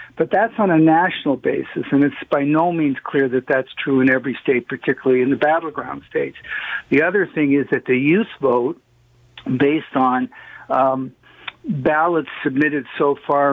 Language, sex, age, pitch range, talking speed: English, male, 50-69, 130-155 Hz, 170 wpm